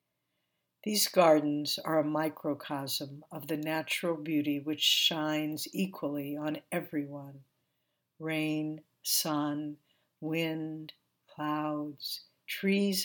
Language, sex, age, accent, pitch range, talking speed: English, female, 60-79, American, 150-170 Hz, 85 wpm